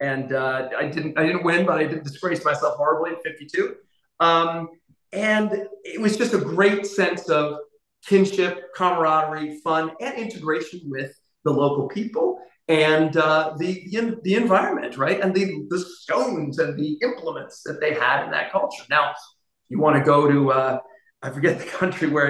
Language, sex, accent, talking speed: English, male, American, 180 wpm